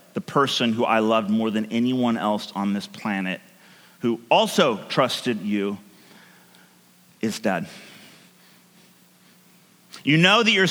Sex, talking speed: male, 125 wpm